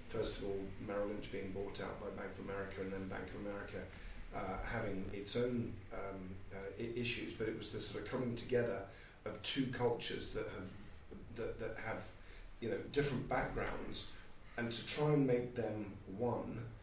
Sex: male